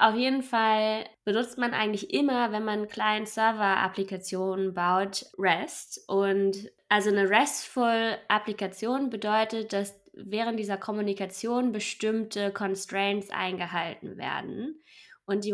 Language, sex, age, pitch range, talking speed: German, female, 20-39, 190-220 Hz, 110 wpm